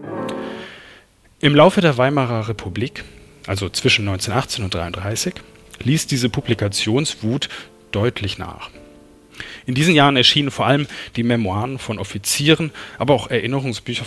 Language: German